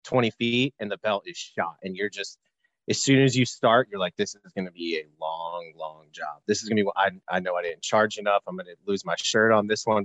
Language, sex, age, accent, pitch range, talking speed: English, male, 30-49, American, 100-125 Hz, 285 wpm